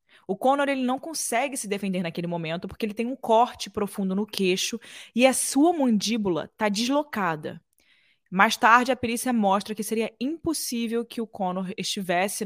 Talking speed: 170 wpm